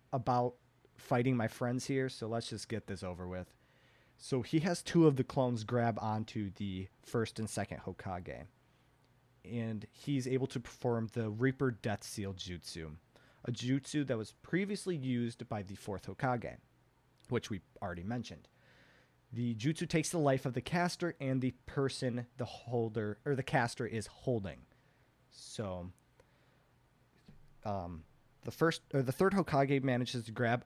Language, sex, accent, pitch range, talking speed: English, male, American, 110-135 Hz, 155 wpm